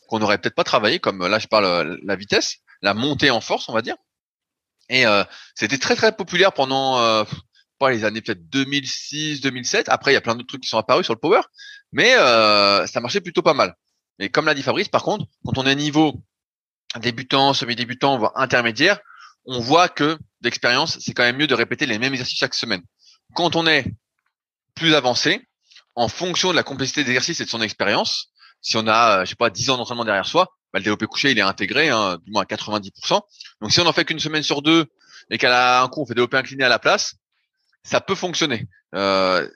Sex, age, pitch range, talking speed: male, 20-39, 115-155 Hz, 220 wpm